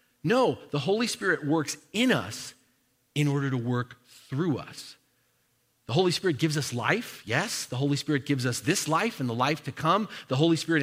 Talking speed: 195 wpm